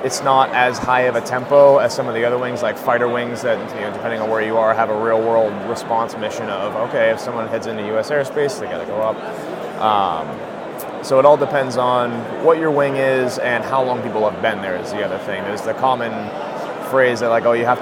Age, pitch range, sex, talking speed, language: 20-39, 110-130 Hz, male, 235 wpm, English